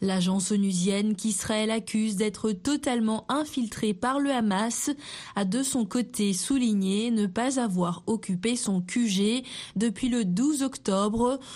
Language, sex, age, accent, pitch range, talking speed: French, female, 20-39, French, 200-250 Hz, 130 wpm